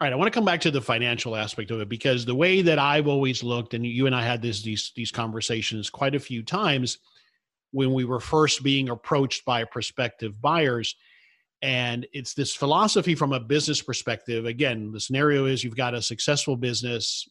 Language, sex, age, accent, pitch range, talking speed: English, male, 50-69, American, 120-150 Hz, 205 wpm